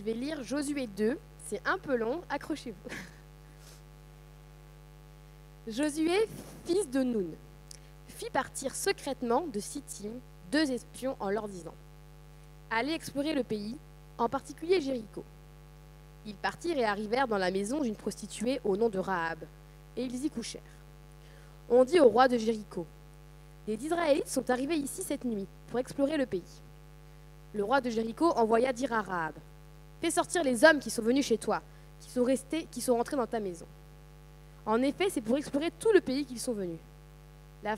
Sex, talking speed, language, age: female, 170 wpm, French, 20-39